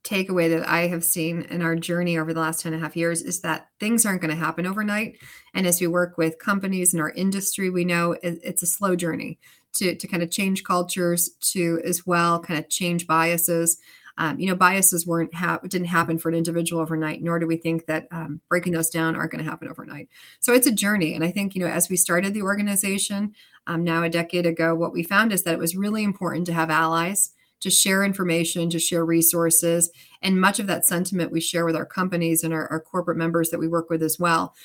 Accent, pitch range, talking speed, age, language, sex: American, 165-185 Hz, 235 wpm, 30-49, English, female